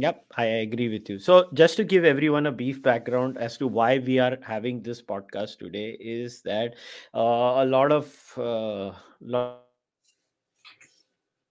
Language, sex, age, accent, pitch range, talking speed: English, male, 20-39, Indian, 115-135 Hz, 155 wpm